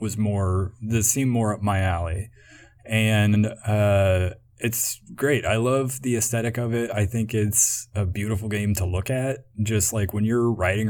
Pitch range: 105-120 Hz